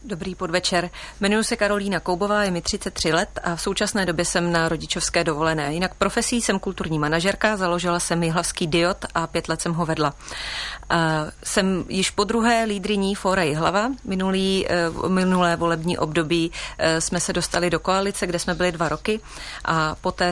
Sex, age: female, 30-49